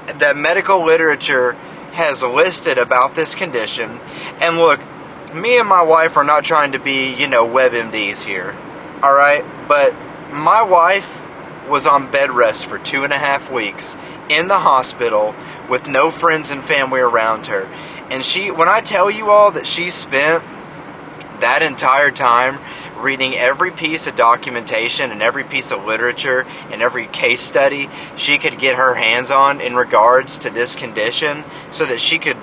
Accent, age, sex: American, 30-49, male